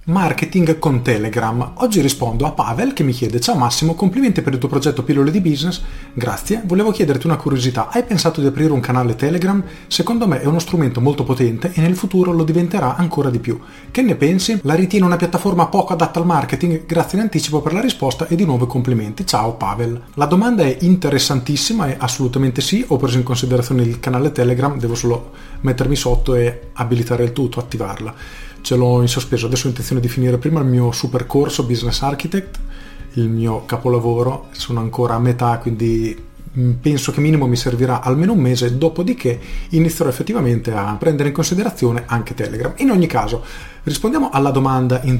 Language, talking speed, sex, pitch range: Italian, 185 wpm, male, 120-165 Hz